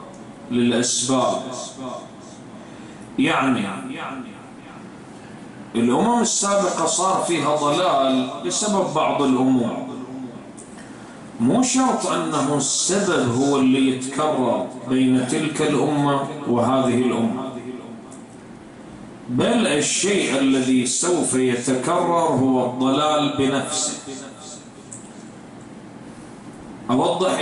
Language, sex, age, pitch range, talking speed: English, male, 40-59, 130-155 Hz, 70 wpm